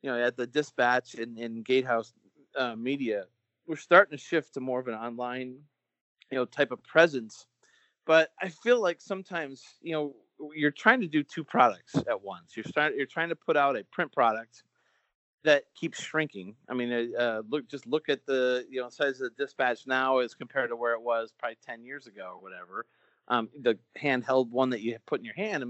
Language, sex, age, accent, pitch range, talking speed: English, male, 30-49, American, 120-150 Hz, 210 wpm